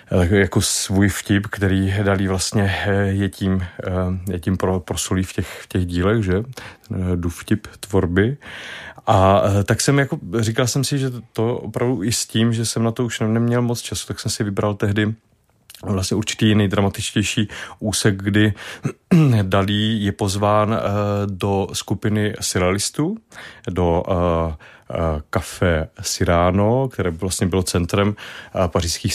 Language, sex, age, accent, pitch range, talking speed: Czech, male, 30-49, native, 95-110 Hz, 135 wpm